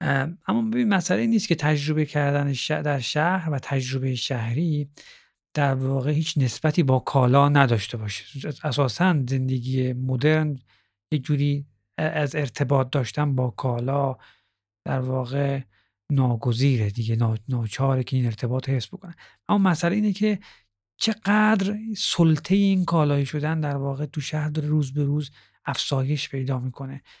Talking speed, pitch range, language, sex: 135 wpm, 130-160 Hz, Persian, male